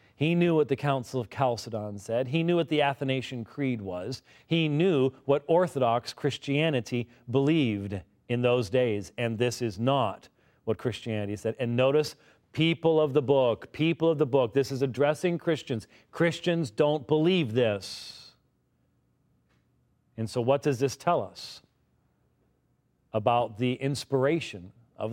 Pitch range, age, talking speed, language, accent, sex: 115-145 Hz, 40-59, 145 wpm, English, American, male